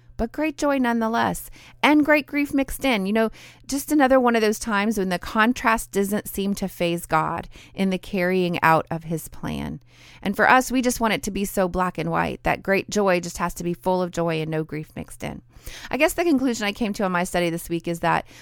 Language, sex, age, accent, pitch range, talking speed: English, female, 30-49, American, 175-225 Hz, 240 wpm